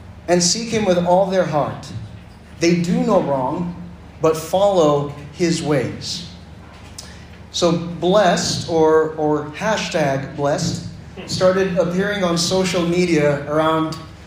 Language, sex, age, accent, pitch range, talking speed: English, male, 30-49, American, 150-180 Hz, 115 wpm